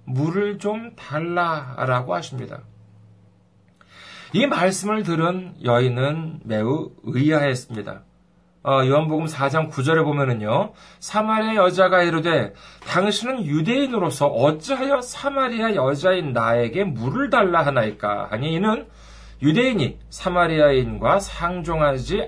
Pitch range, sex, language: 145-215 Hz, male, Korean